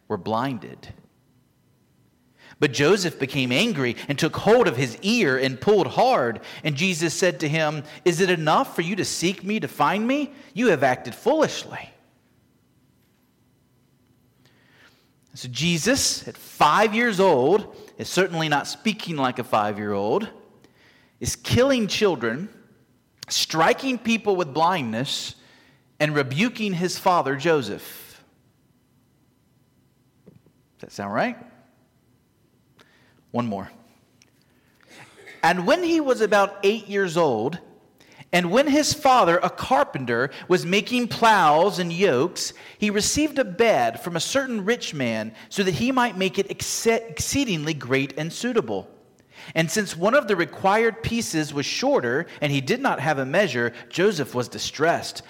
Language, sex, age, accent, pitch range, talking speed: English, male, 40-59, American, 140-210 Hz, 135 wpm